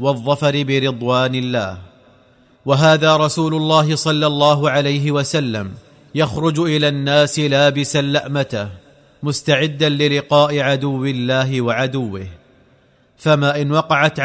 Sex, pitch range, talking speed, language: male, 140-150 Hz, 95 wpm, Arabic